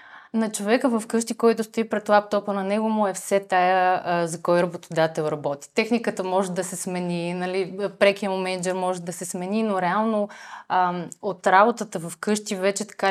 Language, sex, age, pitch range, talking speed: Bulgarian, female, 30-49, 175-210 Hz, 190 wpm